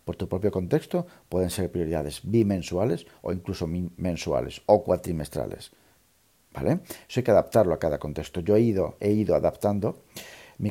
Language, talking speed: Spanish, 165 wpm